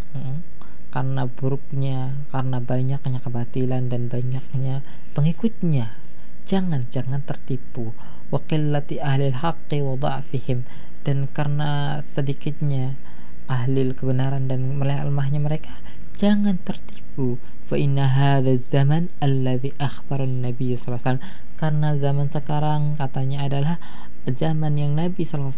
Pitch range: 125-140 Hz